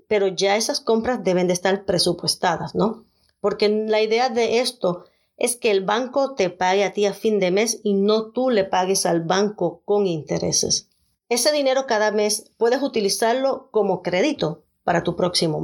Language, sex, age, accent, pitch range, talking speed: Spanish, female, 40-59, American, 190-240 Hz, 175 wpm